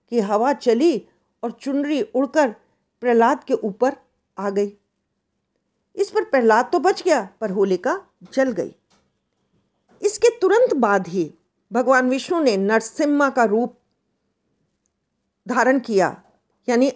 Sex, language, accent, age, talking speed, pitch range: female, Hindi, native, 50-69, 120 wpm, 230-325 Hz